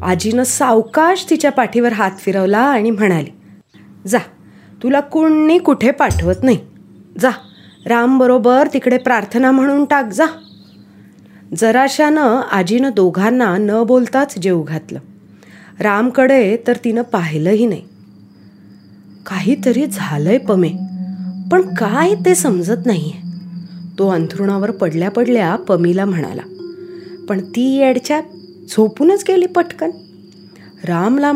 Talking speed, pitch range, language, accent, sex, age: 105 wpm, 180-260 Hz, Marathi, native, female, 30-49